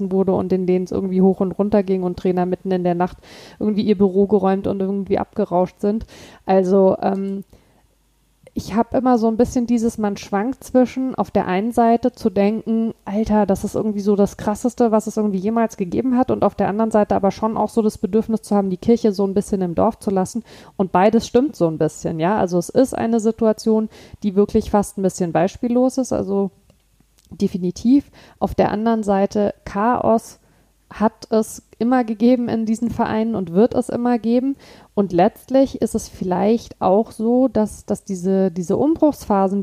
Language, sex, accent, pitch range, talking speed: German, female, German, 195-235 Hz, 190 wpm